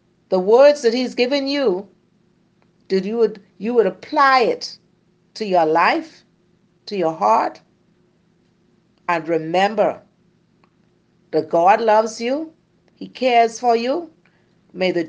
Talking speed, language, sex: 125 wpm, English, female